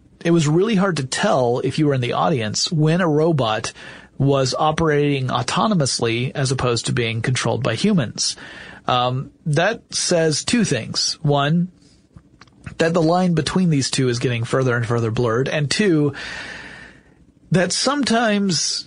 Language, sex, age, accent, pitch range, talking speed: English, male, 30-49, American, 125-160 Hz, 150 wpm